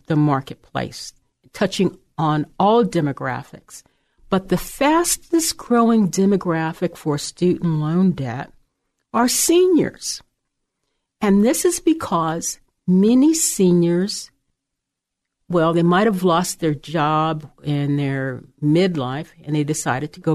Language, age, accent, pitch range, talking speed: English, 50-69, American, 150-205 Hz, 110 wpm